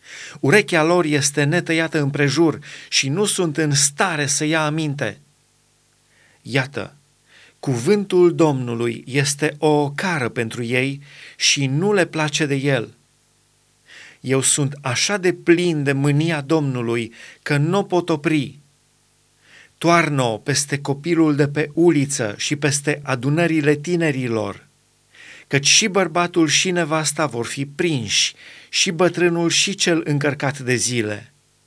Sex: male